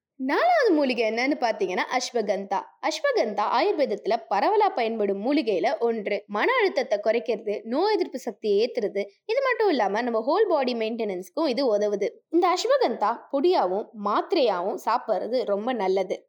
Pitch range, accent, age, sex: 210-300 Hz, native, 20-39, female